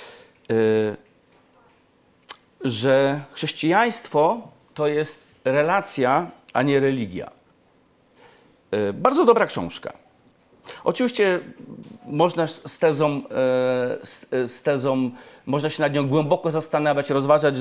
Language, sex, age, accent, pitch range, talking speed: Polish, male, 40-59, native, 135-170 Hz, 70 wpm